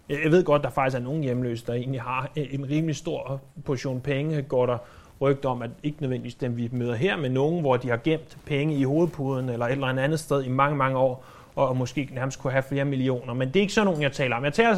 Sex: male